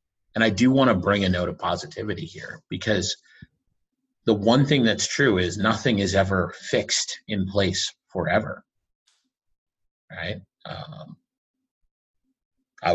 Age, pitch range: 30-49, 90-125 Hz